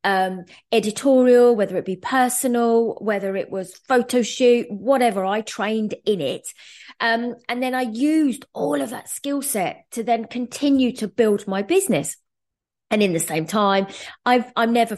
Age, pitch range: 20-39, 190-245 Hz